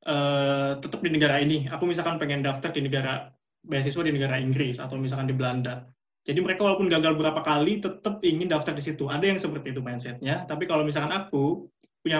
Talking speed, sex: 195 wpm, male